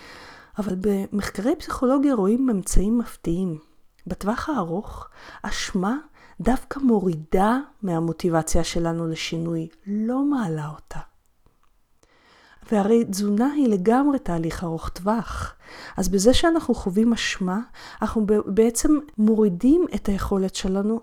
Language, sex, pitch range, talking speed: Hebrew, female, 185-245 Hz, 100 wpm